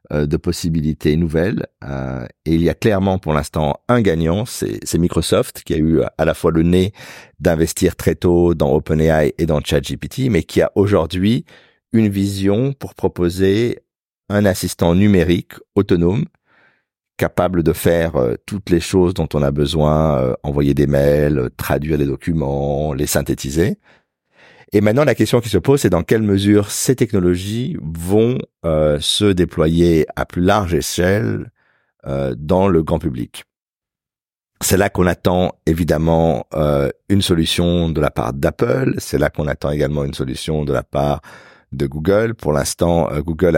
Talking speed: 155 wpm